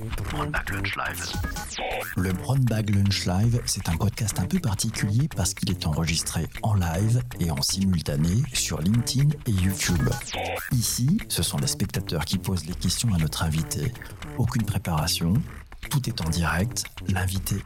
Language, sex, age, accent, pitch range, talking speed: French, male, 60-79, French, 105-155 Hz, 145 wpm